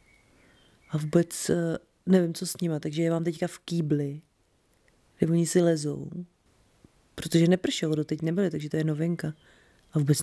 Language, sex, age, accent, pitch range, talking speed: Czech, female, 30-49, native, 165-180 Hz, 160 wpm